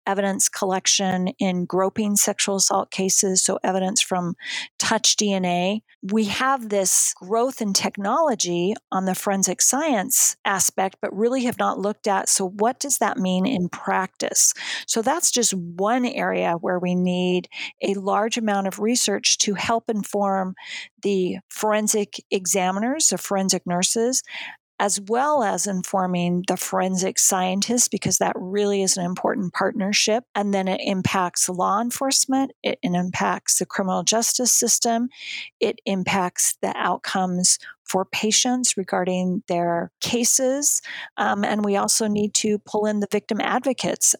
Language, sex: English, female